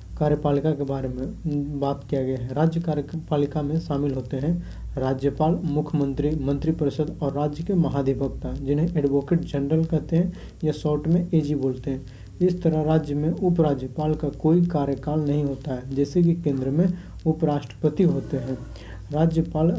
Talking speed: 155 wpm